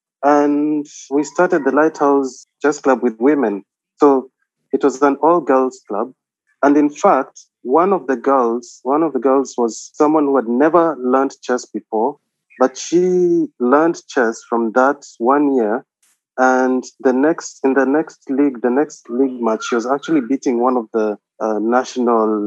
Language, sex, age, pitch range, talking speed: English, male, 30-49, 120-145 Hz, 165 wpm